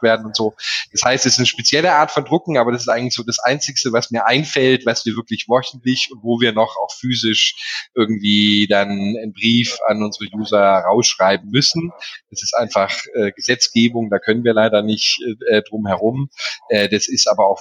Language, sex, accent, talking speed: German, male, German, 200 wpm